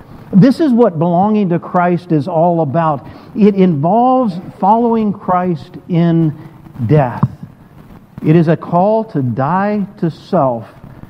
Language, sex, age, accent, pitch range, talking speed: English, male, 50-69, American, 145-200 Hz, 125 wpm